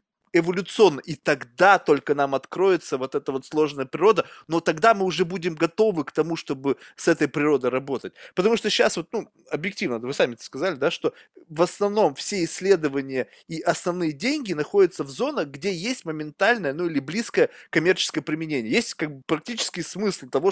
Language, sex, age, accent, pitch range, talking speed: Russian, male, 20-39, native, 150-195 Hz, 175 wpm